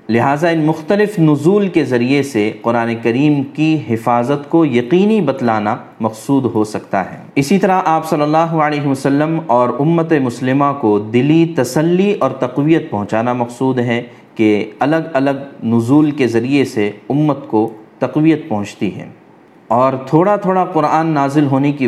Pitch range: 115-150 Hz